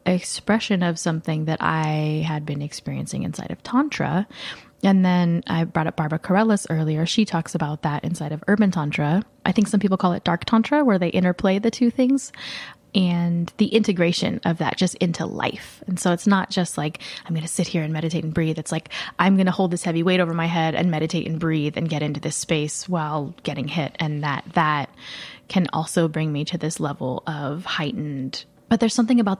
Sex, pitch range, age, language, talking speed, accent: female, 160-195 Hz, 20-39, English, 210 wpm, American